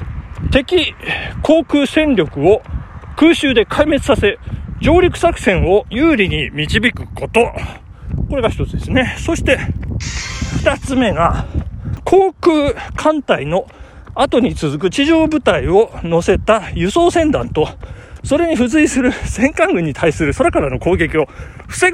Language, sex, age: Japanese, male, 40-59